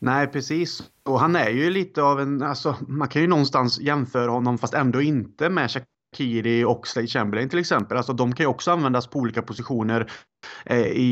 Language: Swedish